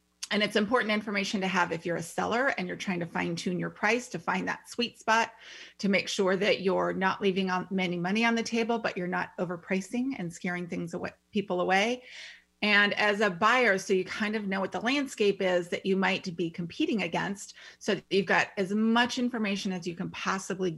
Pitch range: 180-210 Hz